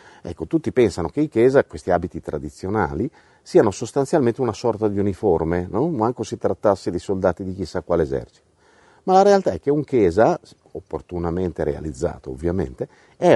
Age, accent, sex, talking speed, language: 50-69, native, male, 160 wpm, Italian